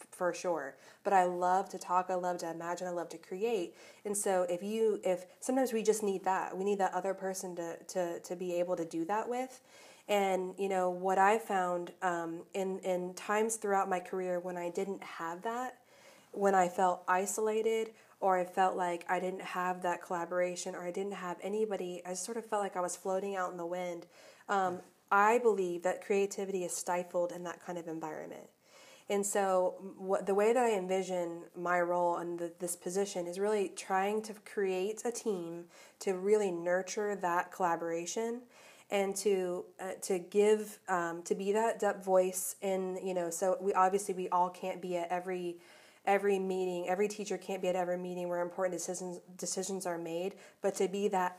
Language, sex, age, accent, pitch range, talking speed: English, female, 30-49, American, 180-200 Hz, 195 wpm